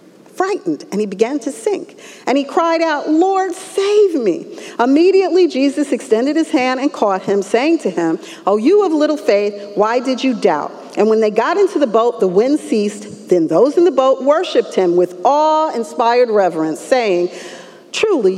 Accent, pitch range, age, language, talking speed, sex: American, 225-345 Hz, 50-69, English, 180 wpm, female